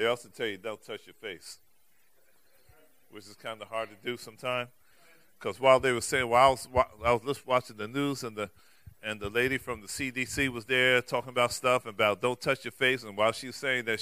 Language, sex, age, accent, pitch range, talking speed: English, male, 40-59, American, 110-160 Hz, 230 wpm